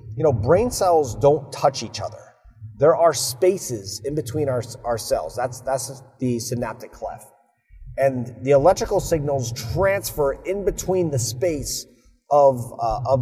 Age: 30-49